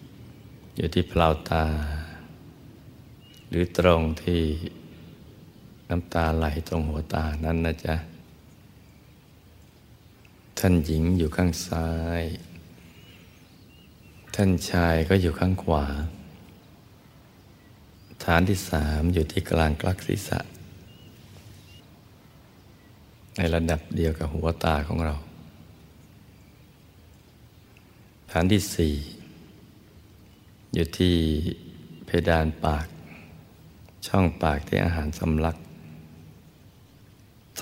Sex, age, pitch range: male, 60-79, 80-90 Hz